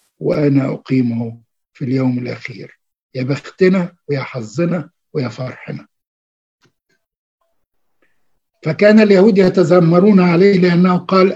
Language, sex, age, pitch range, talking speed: Arabic, male, 60-79, 140-180 Hz, 90 wpm